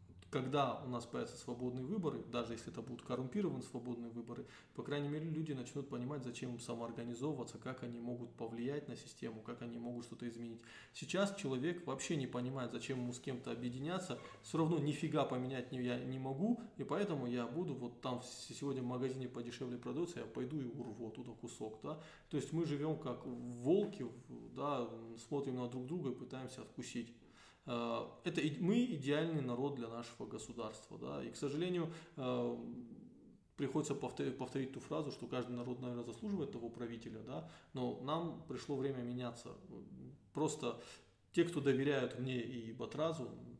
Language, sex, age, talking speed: Russian, male, 20-39, 160 wpm